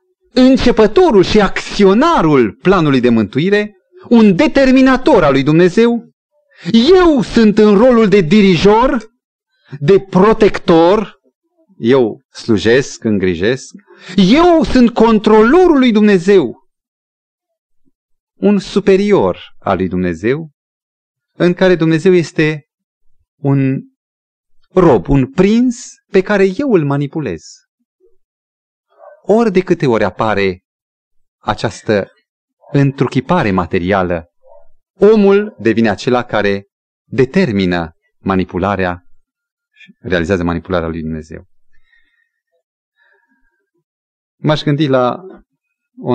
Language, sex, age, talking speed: Romanian, male, 30-49, 90 wpm